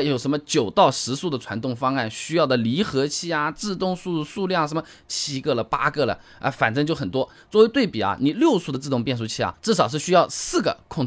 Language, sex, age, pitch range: Chinese, male, 20-39, 125-190 Hz